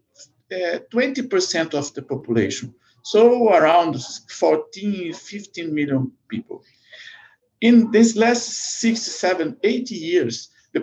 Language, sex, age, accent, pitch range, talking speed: English, male, 50-69, Brazilian, 125-210 Hz, 105 wpm